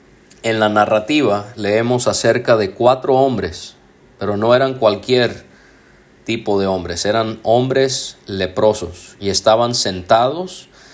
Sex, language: male, Spanish